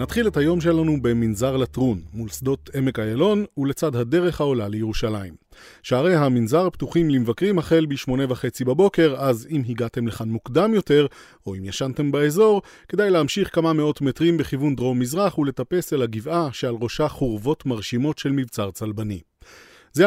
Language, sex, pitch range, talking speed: Hebrew, male, 120-160 Hz, 150 wpm